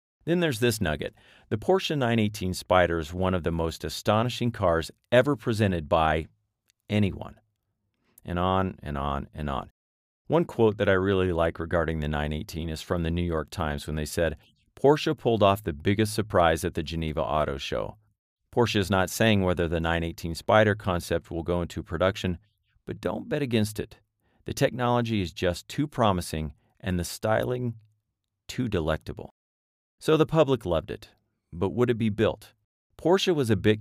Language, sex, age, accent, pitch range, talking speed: English, male, 40-59, American, 85-110 Hz, 170 wpm